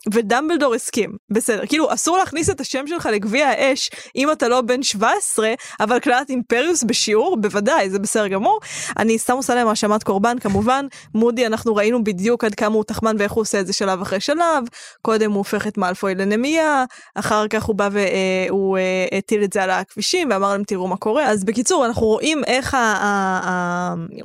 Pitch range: 205-265 Hz